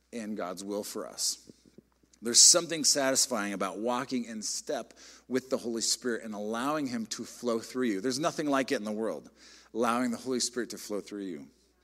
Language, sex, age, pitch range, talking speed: English, male, 40-59, 100-135 Hz, 195 wpm